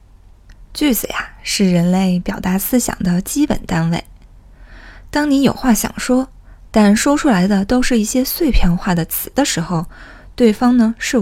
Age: 20-39